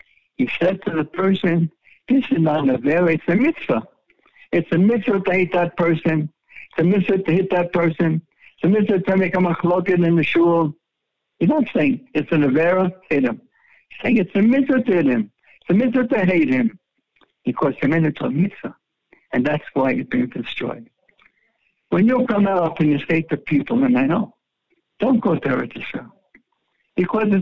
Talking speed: 195 wpm